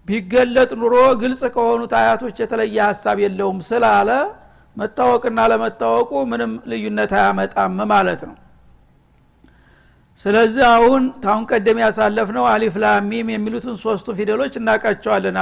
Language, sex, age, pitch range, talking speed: Amharic, male, 60-79, 200-230 Hz, 110 wpm